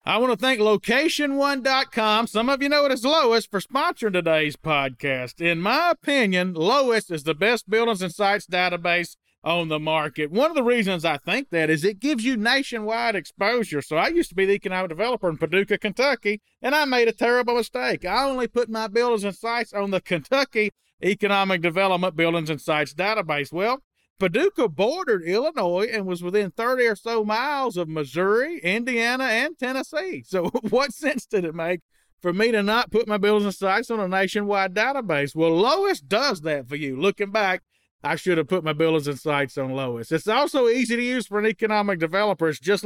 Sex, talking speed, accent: male, 195 wpm, American